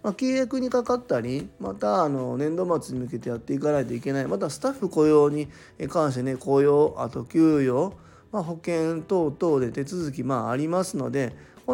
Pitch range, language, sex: 125-170 Hz, Japanese, male